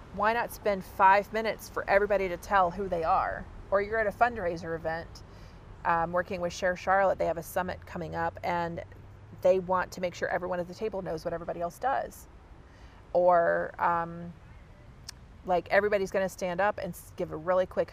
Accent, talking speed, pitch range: American, 190 wpm, 170-195 Hz